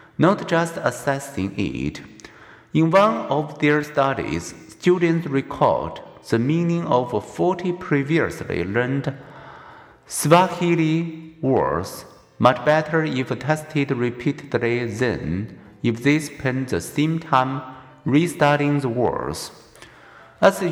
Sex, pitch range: male, 125-165 Hz